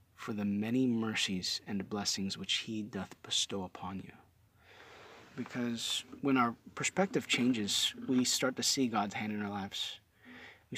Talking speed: 150 wpm